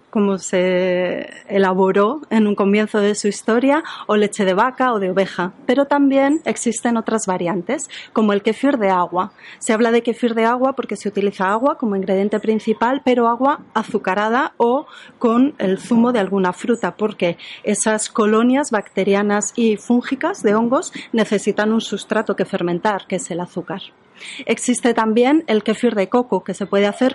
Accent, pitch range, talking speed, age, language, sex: Spanish, 195-240 Hz, 170 wpm, 30-49, Spanish, female